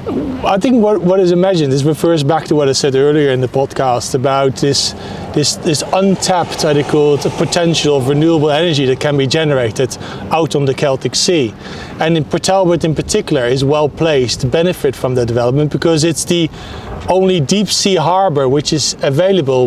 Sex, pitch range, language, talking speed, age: male, 150-185 Hz, English, 190 wpm, 30-49